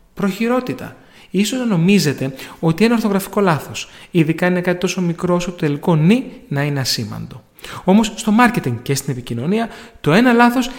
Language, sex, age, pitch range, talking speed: Greek, male, 30-49, 150-200 Hz, 150 wpm